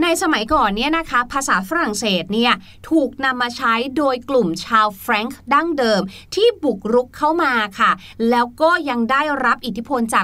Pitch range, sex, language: 220-280 Hz, female, Thai